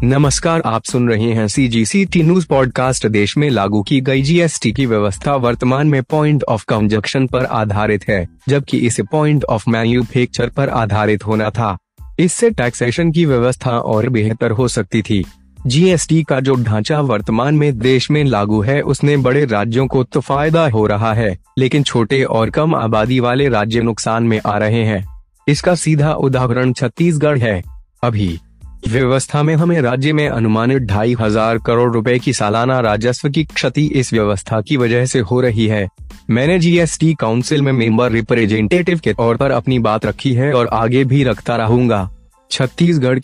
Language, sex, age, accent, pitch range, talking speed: Hindi, male, 20-39, native, 110-140 Hz, 170 wpm